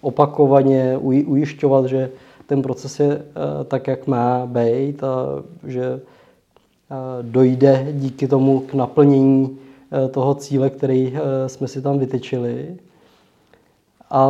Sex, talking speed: male, 105 wpm